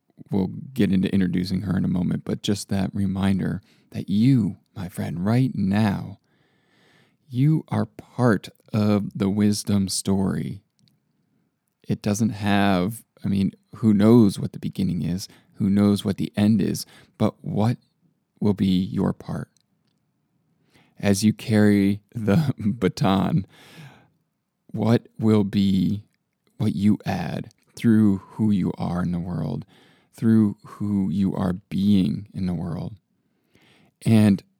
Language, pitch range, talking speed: English, 100-125 Hz, 130 wpm